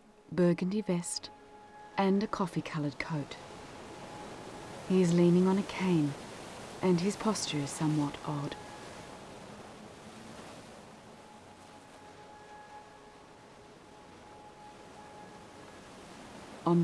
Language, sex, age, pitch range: English, female, 40-59, 150-185 Hz